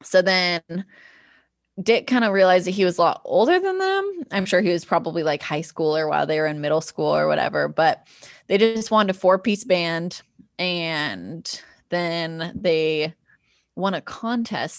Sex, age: female, 20-39